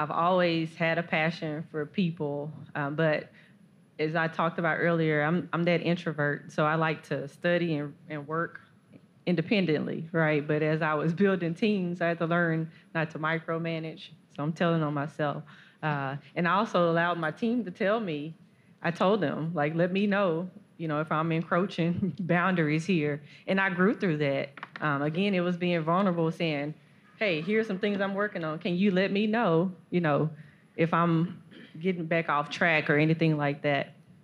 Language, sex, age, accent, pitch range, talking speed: English, female, 20-39, American, 150-175 Hz, 185 wpm